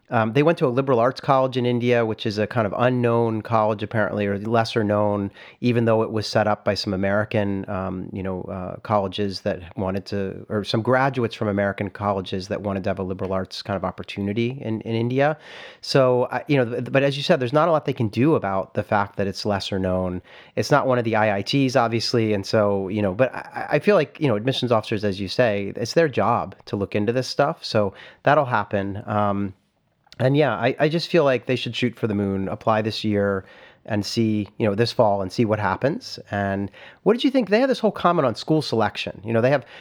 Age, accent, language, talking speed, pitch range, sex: 30-49, American, English, 235 wpm, 100-125 Hz, male